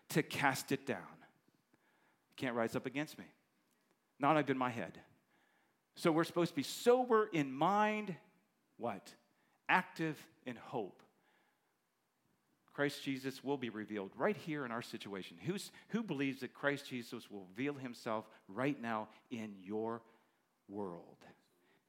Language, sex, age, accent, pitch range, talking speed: English, male, 50-69, American, 120-170 Hz, 135 wpm